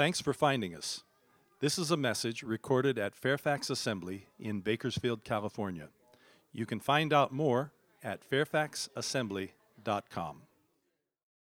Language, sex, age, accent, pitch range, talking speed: English, male, 50-69, American, 130-170 Hz, 115 wpm